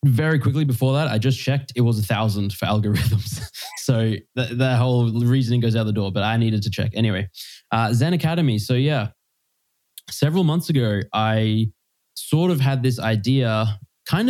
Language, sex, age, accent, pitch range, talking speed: English, male, 20-39, Australian, 110-130 Hz, 180 wpm